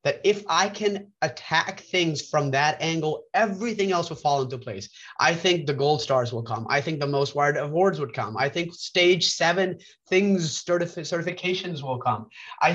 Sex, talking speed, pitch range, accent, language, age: male, 185 wpm, 130-170 Hz, American, English, 30-49